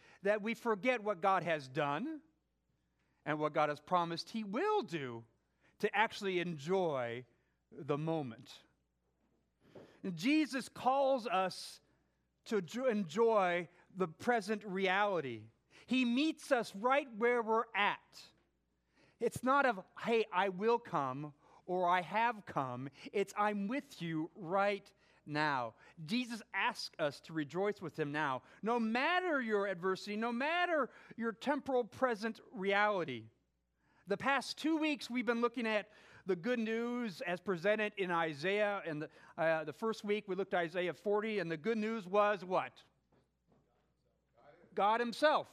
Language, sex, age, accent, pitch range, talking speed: English, male, 40-59, American, 180-250 Hz, 140 wpm